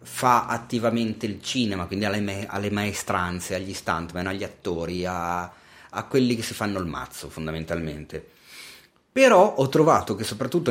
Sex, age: male, 30-49